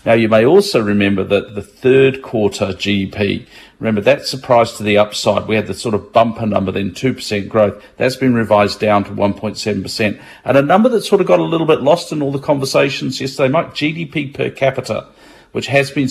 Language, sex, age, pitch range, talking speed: English, male, 50-69, 110-135 Hz, 205 wpm